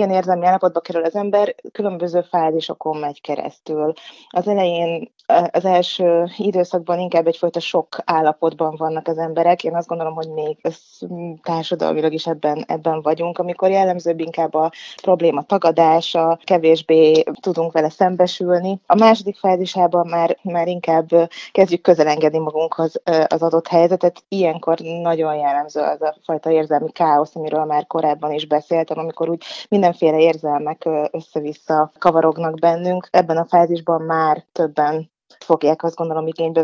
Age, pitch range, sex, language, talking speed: 20-39, 160-180 Hz, female, Hungarian, 140 wpm